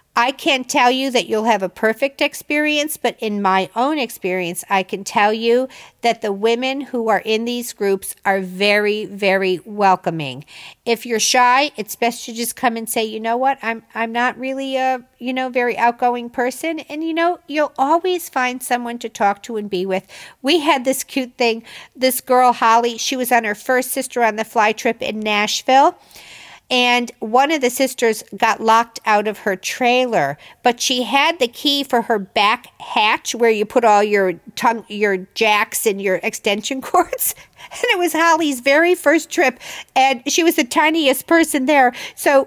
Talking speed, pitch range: 190 wpm, 215-270 Hz